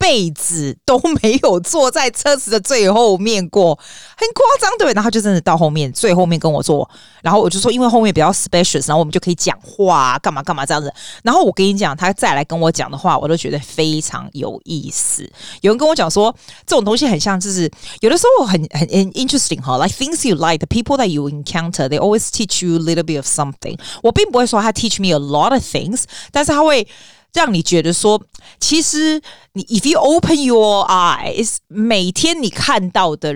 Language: Chinese